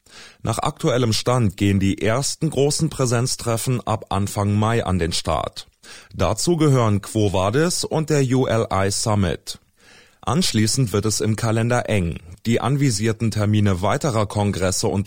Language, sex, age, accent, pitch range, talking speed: German, male, 30-49, German, 100-130 Hz, 135 wpm